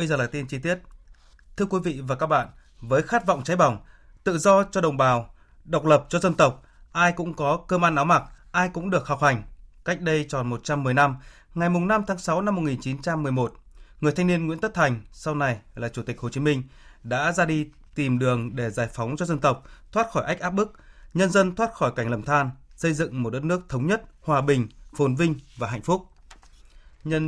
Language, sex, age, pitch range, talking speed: Vietnamese, male, 20-39, 125-165 Hz, 225 wpm